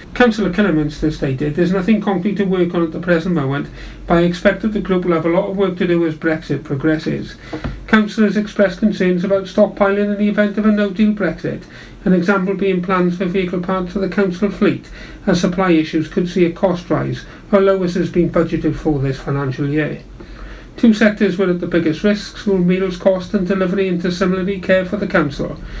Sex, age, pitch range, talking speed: male, 40-59, 165-205 Hz, 205 wpm